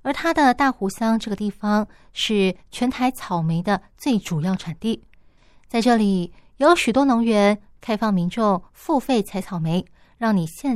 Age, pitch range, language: 20-39, 195-240 Hz, Chinese